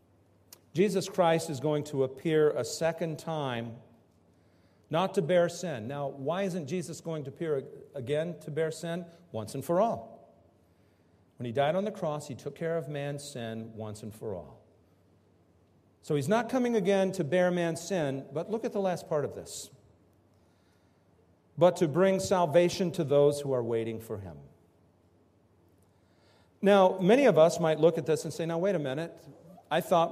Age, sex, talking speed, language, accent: 50-69, male, 175 wpm, English, American